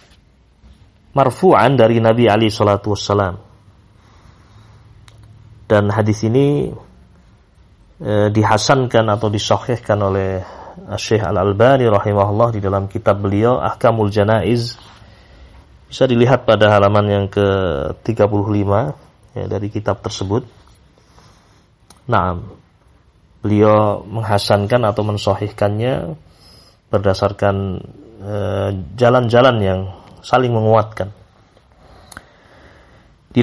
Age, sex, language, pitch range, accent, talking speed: 30-49, male, Indonesian, 100-125 Hz, native, 80 wpm